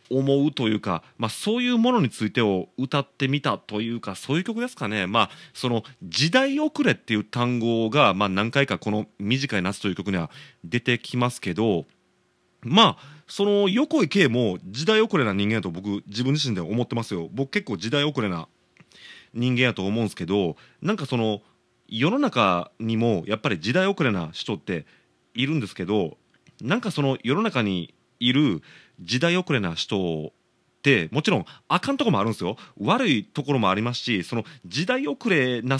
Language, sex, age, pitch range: Japanese, male, 30-49, 110-170 Hz